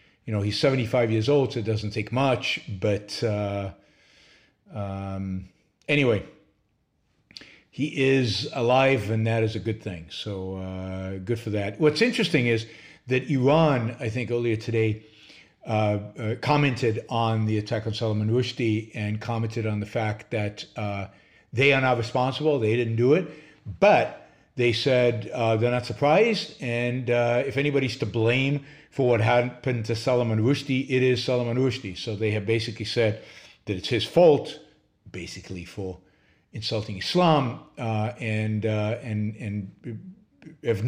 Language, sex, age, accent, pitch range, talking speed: English, male, 50-69, American, 105-125 Hz, 155 wpm